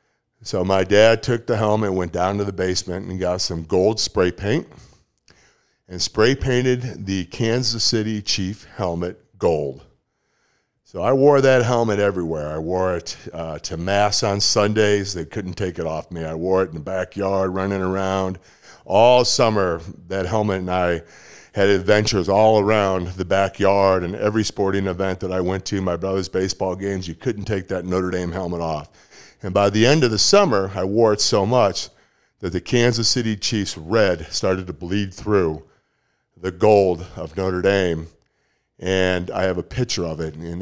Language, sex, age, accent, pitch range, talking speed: English, male, 50-69, American, 90-110 Hz, 180 wpm